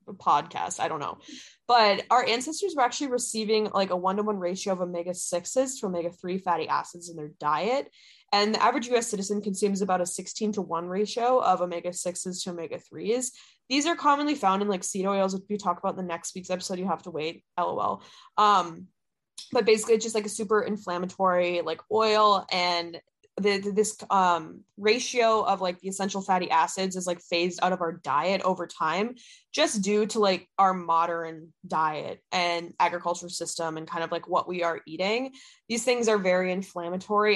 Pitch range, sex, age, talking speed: 175-225 Hz, female, 20-39, 185 wpm